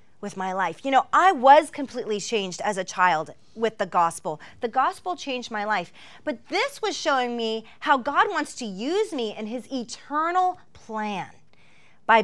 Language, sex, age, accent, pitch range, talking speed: English, female, 30-49, American, 205-290 Hz, 175 wpm